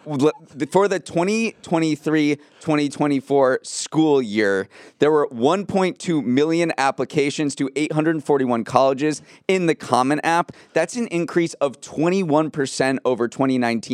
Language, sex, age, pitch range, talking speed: English, male, 20-39, 120-150 Hz, 105 wpm